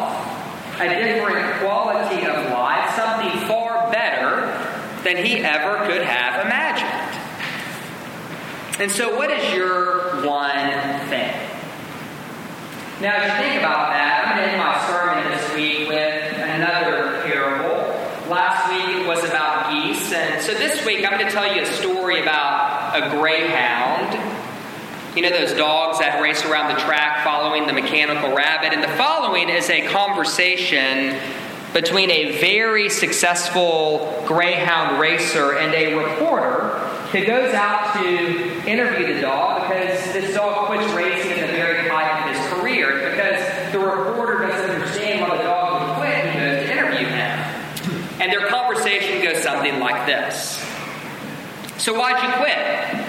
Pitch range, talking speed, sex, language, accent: 155-195 Hz, 150 wpm, male, English, American